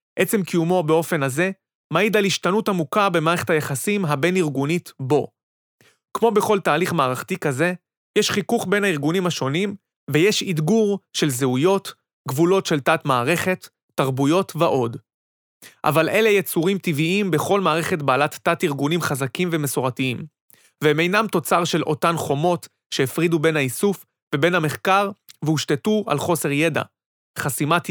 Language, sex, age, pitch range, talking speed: Hebrew, male, 30-49, 145-190 Hz, 125 wpm